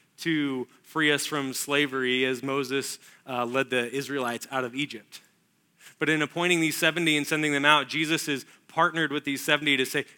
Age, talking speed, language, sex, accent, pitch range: 20-39, 185 wpm, English, male, American, 135-155 Hz